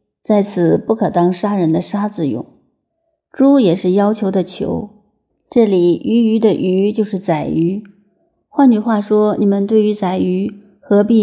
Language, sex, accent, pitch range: Chinese, female, native, 175-215 Hz